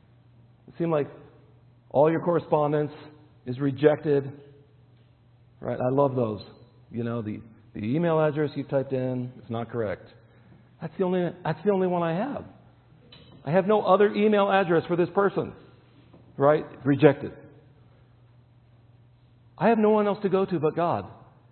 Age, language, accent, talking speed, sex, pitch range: 50-69, English, American, 150 wpm, male, 120-155 Hz